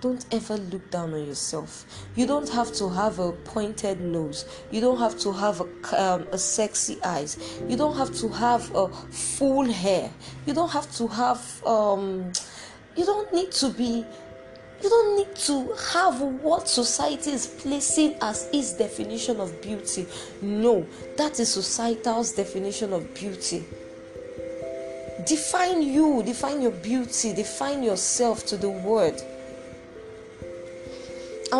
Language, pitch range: English, 190-285 Hz